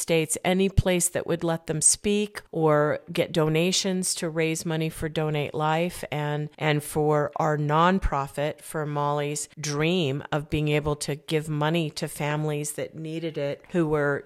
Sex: female